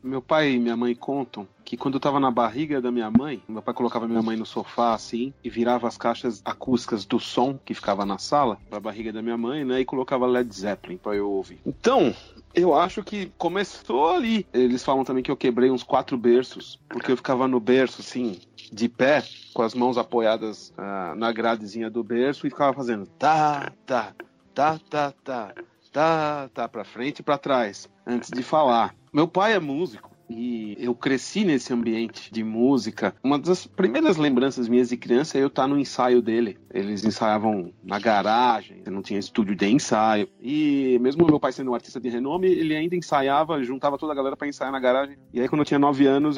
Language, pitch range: Portuguese, 115-140 Hz